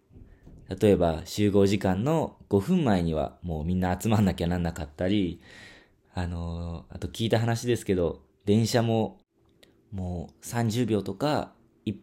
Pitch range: 90-130 Hz